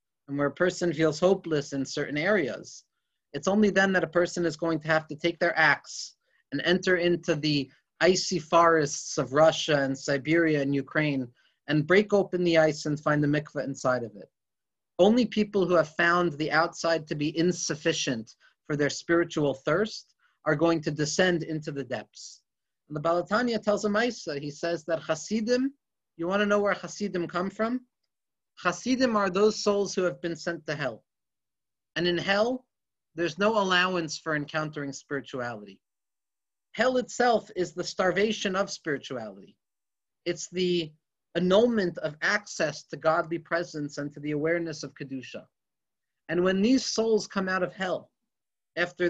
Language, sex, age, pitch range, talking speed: English, male, 30-49, 150-190 Hz, 165 wpm